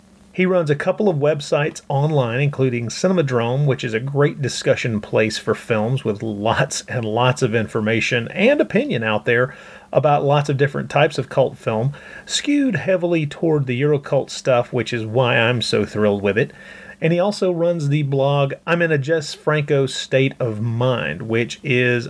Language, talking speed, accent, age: English, 175 wpm, American, 30-49